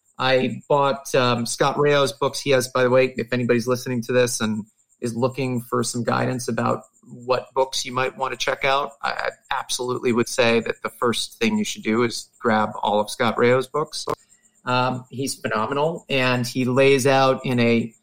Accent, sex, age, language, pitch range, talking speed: American, male, 40-59, English, 120-145 Hz, 195 wpm